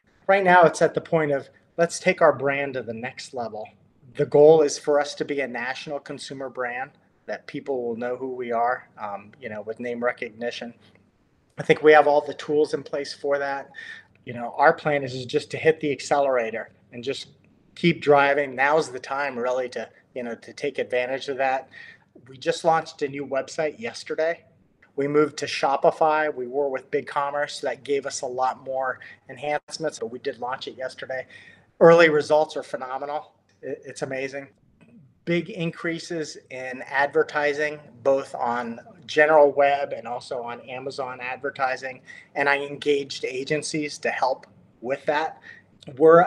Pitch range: 130-155 Hz